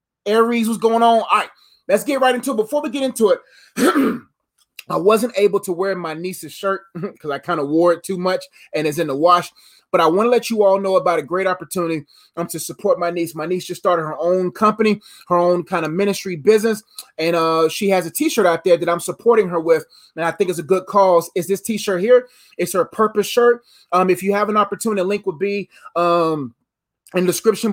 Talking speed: 235 wpm